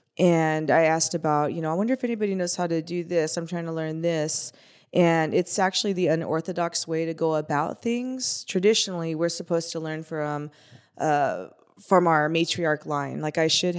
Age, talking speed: 20-39, 190 wpm